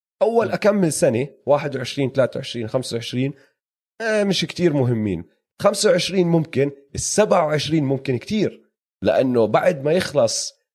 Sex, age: male, 30-49